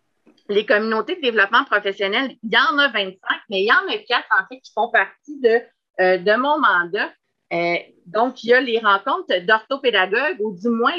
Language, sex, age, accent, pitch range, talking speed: French, female, 30-49, Canadian, 195-255 Hz, 200 wpm